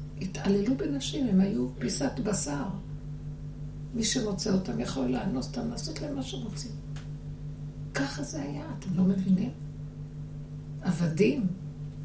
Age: 60-79